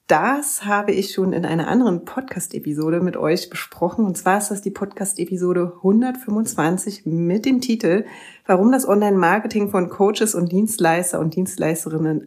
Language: German